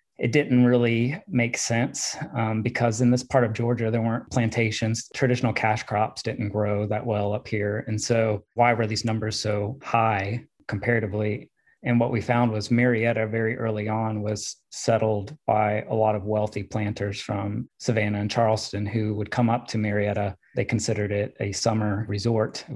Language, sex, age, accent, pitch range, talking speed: English, male, 30-49, American, 105-120 Hz, 175 wpm